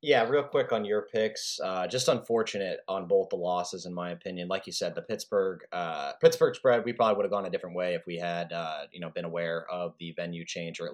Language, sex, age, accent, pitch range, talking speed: English, male, 20-39, American, 85-115 Hz, 250 wpm